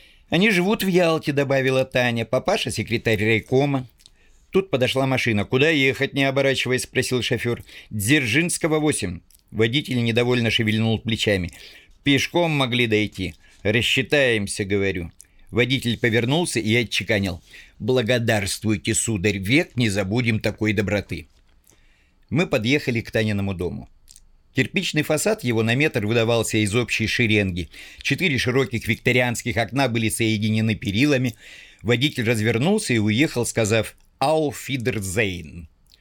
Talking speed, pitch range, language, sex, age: 110 wpm, 105-135 Hz, Russian, male, 50-69